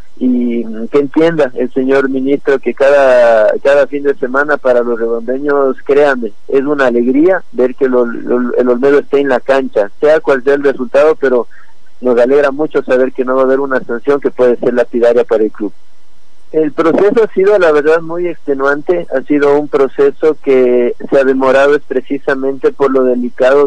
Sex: male